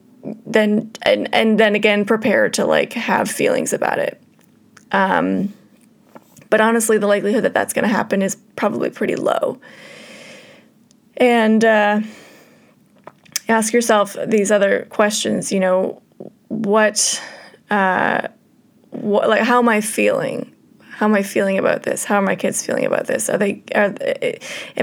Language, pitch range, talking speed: English, 200-235 Hz, 140 wpm